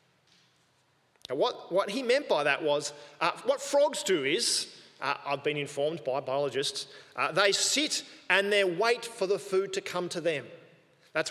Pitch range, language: 155-245 Hz, English